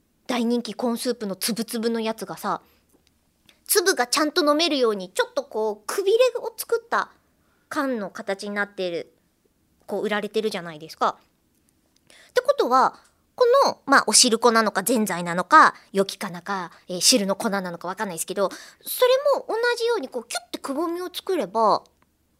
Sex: male